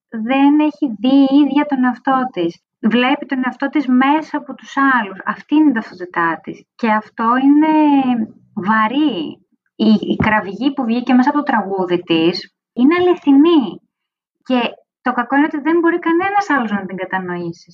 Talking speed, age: 165 wpm, 20-39